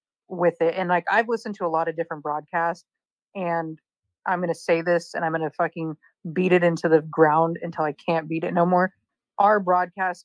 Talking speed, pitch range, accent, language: 205 wpm, 160-185 Hz, American, English